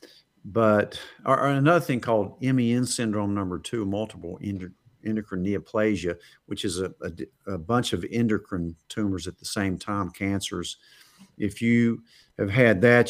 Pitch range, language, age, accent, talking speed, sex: 90-110 Hz, English, 50-69, American, 140 wpm, male